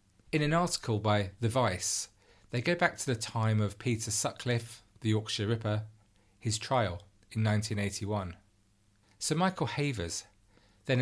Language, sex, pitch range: English, male, 100-115 Hz